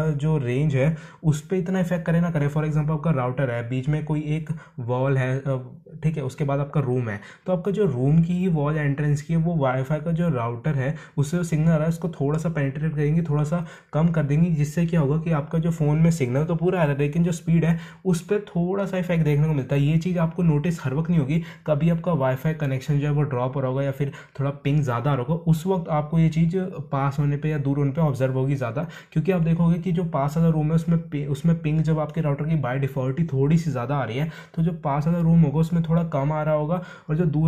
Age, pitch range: 20-39, 140-170 Hz